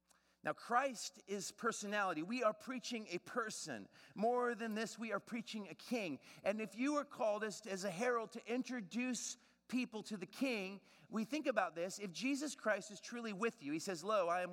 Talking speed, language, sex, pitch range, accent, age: 200 wpm, English, male, 140-205 Hz, American, 40-59